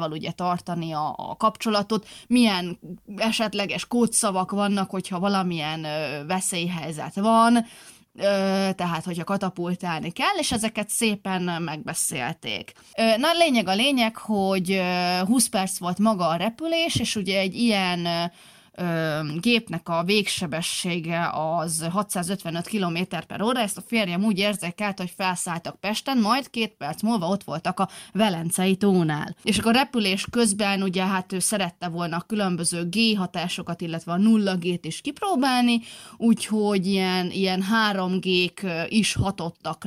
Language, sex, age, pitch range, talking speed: Hungarian, female, 20-39, 170-220 Hz, 140 wpm